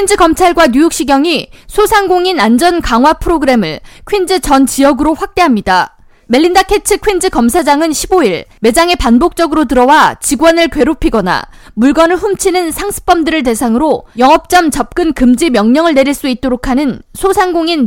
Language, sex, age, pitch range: Korean, female, 20-39, 270-355 Hz